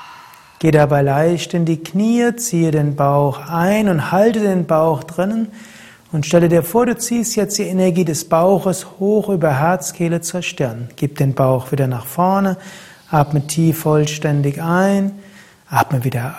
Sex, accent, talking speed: male, German, 155 wpm